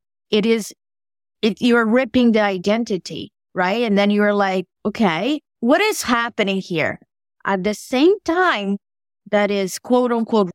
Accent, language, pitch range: American, English, 190-230 Hz